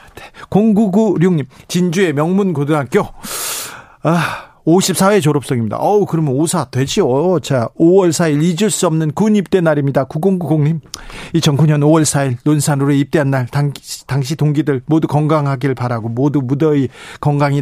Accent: native